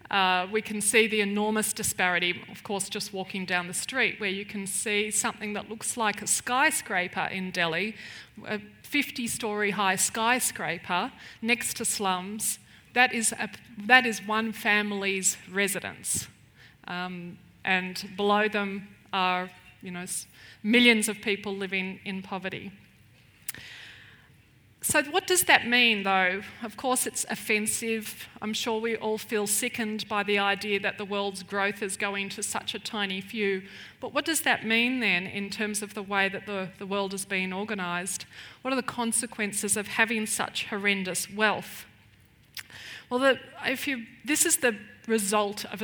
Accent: Australian